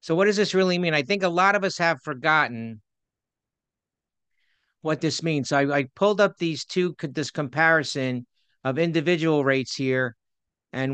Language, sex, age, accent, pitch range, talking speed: English, male, 50-69, American, 140-170 Hz, 175 wpm